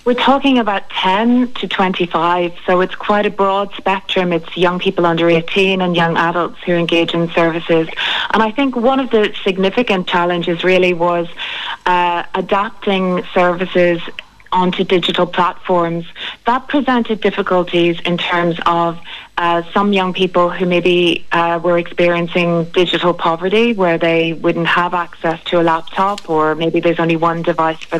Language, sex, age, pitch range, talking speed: English, female, 40-59, 170-190 Hz, 155 wpm